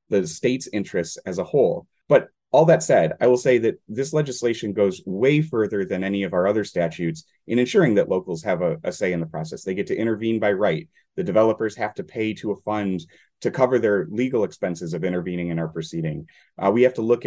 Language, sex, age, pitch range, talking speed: English, male, 30-49, 90-120 Hz, 225 wpm